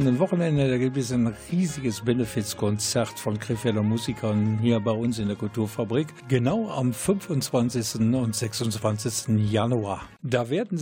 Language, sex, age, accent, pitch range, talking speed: German, male, 50-69, German, 110-140 Hz, 140 wpm